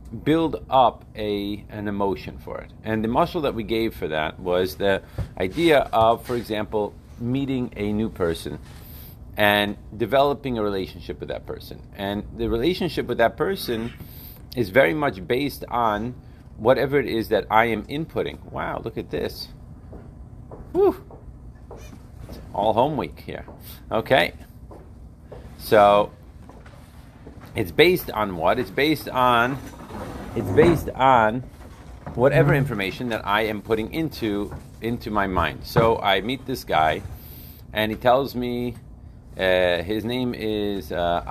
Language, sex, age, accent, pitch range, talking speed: English, male, 40-59, American, 100-120 Hz, 140 wpm